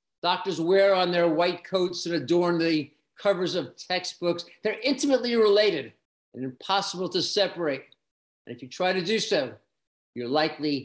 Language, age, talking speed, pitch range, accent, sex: English, 50-69, 155 wpm, 160-200 Hz, American, male